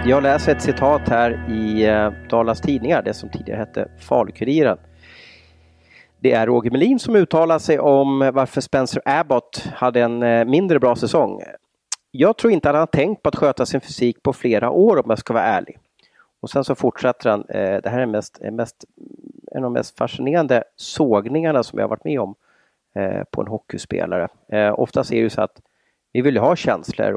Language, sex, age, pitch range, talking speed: Swedish, male, 30-49, 110-150 Hz, 175 wpm